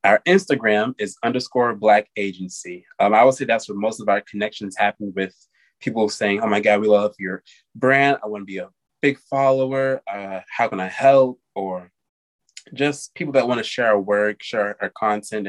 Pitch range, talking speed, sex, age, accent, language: 100-130 Hz, 200 wpm, male, 20-39, American, English